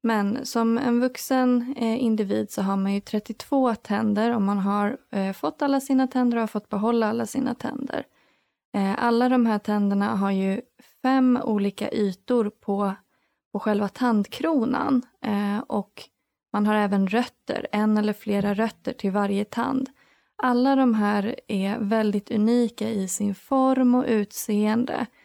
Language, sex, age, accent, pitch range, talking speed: Swedish, female, 20-39, native, 205-245 Hz, 145 wpm